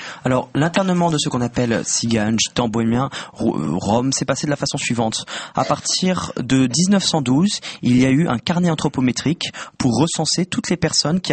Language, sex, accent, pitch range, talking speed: French, male, French, 130-175 Hz, 180 wpm